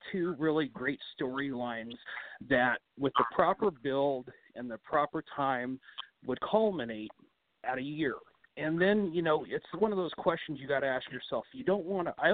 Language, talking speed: English, 170 wpm